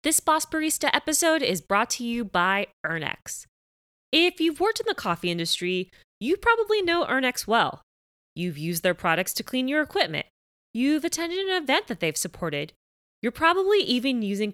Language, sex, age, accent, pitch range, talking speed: English, female, 20-39, American, 180-270 Hz, 170 wpm